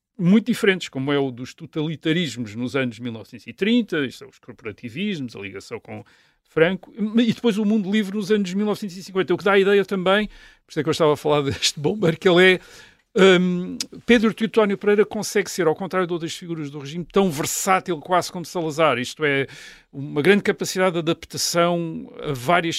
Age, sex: 50-69, male